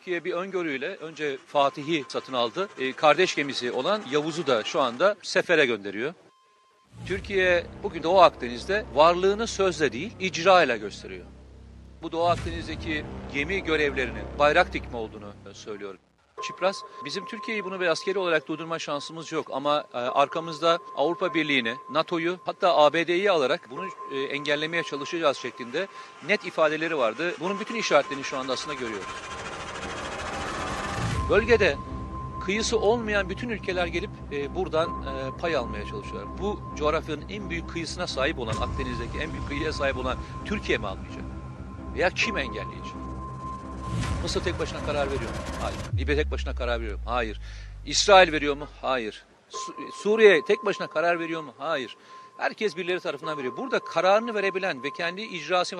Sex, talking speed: male, 140 wpm